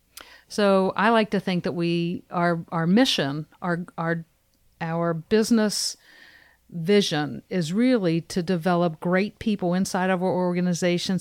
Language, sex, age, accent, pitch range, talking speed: English, female, 50-69, American, 170-200 Hz, 135 wpm